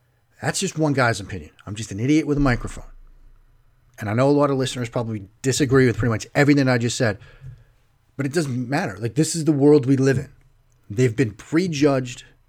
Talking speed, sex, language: 205 wpm, male, English